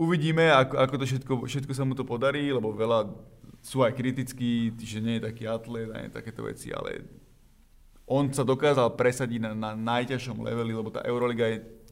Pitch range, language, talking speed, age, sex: 115-130 Hz, Slovak, 180 wpm, 30-49, male